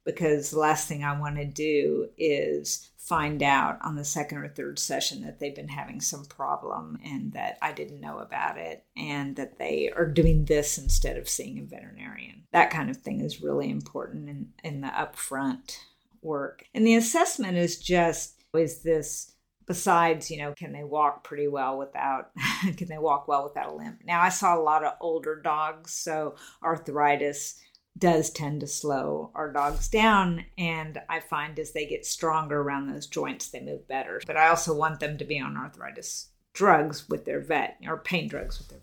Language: English